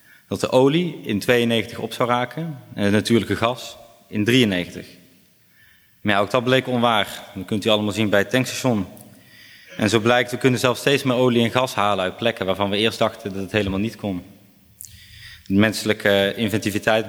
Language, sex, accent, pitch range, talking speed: Dutch, male, Dutch, 100-135 Hz, 190 wpm